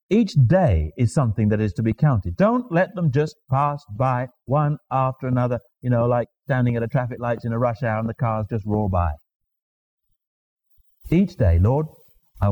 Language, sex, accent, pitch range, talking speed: English, male, British, 100-140 Hz, 190 wpm